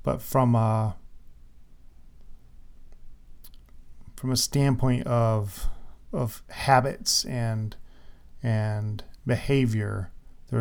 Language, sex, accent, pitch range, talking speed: English, male, American, 105-125 Hz, 75 wpm